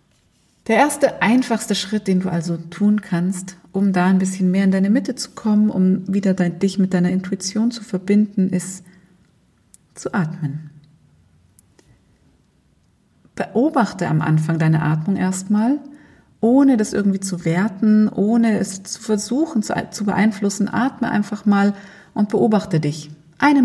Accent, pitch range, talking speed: German, 180-220 Hz, 140 wpm